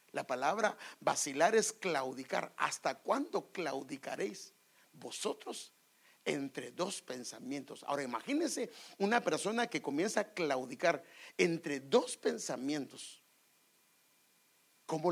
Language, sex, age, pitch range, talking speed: English, male, 50-69, 160-240 Hz, 95 wpm